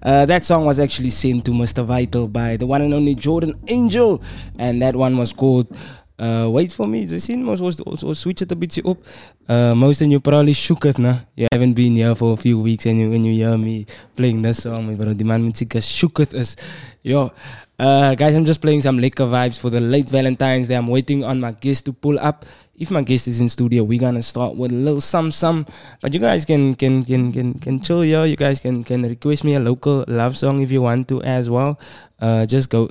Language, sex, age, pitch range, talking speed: English, male, 20-39, 120-145 Hz, 235 wpm